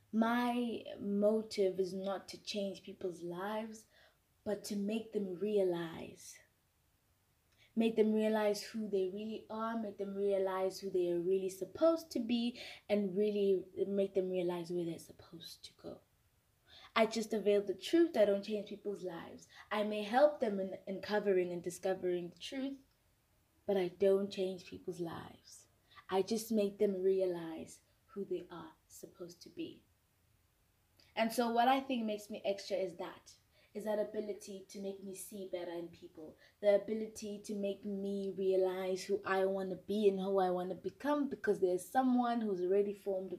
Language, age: English, 20-39